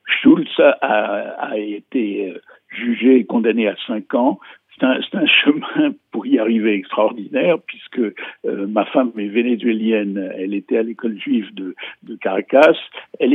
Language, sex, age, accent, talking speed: French, male, 60-79, French, 150 wpm